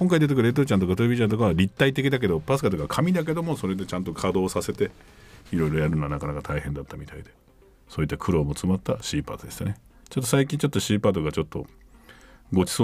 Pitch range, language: 85-140 Hz, Japanese